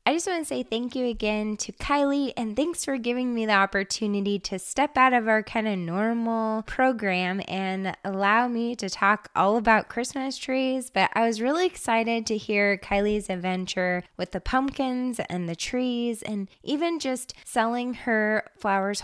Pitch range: 195-255 Hz